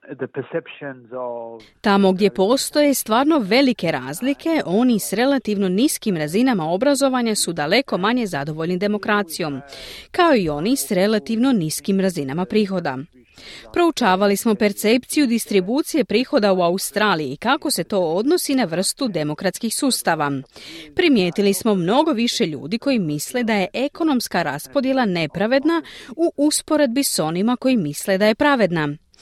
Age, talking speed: 30-49, 125 wpm